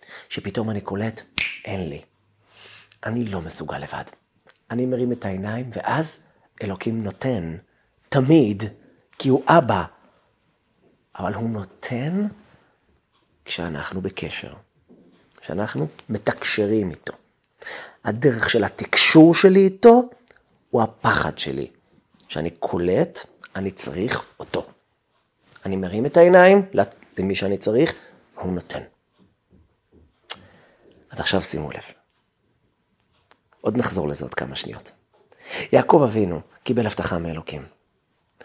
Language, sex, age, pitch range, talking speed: Hebrew, male, 40-59, 95-145 Hz, 100 wpm